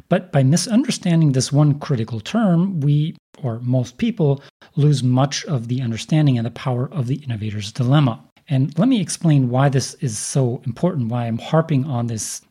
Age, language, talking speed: 40-59, English, 180 wpm